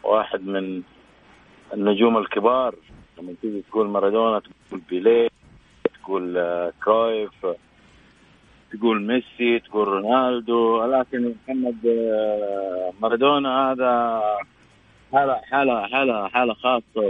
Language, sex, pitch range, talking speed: Arabic, male, 120-145 Hz, 90 wpm